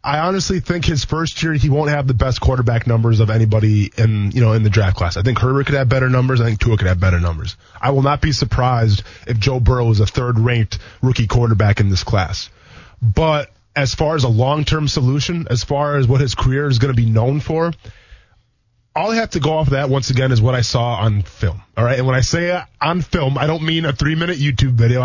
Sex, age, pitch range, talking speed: male, 20-39, 115-155 Hz, 250 wpm